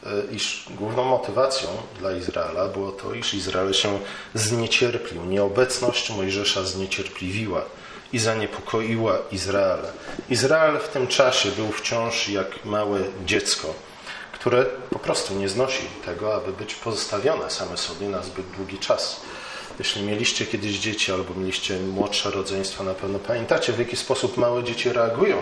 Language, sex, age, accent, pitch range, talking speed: Polish, male, 40-59, native, 95-125 Hz, 135 wpm